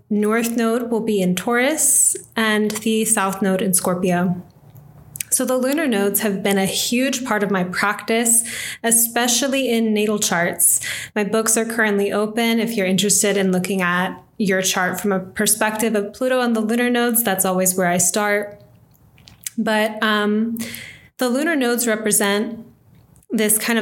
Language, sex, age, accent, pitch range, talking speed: English, female, 20-39, American, 195-230 Hz, 160 wpm